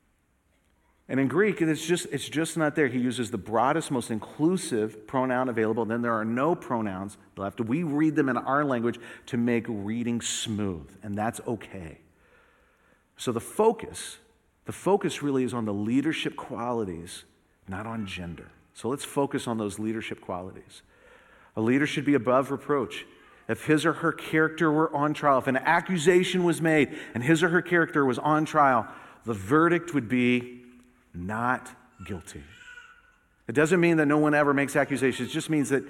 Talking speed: 175 wpm